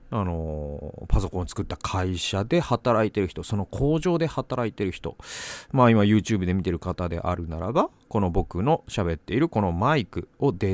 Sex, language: male, Japanese